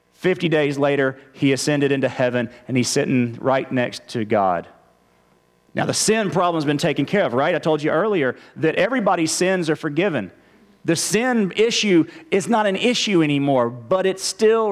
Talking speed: 175 wpm